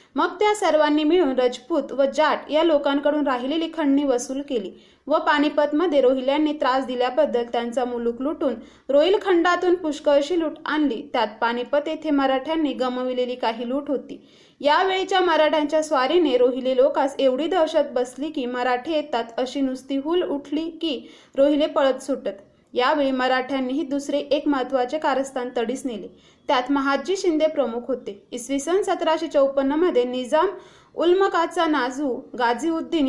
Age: 30-49